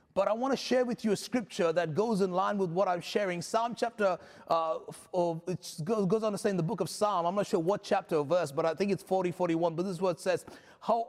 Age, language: 30-49, English